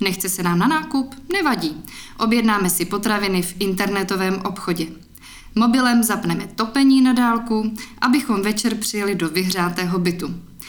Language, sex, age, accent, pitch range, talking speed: Czech, female, 20-39, native, 185-225 Hz, 130 wpm